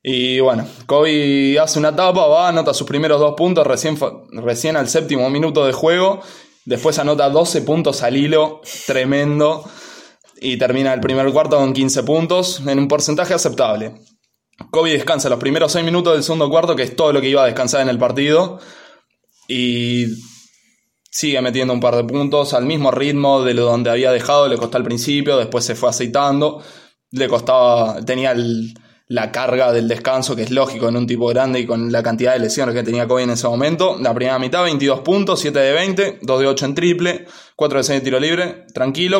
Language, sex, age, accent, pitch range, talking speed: Spanish, male, 20-39, Argentinian, 125-155 Hz, 195 wpm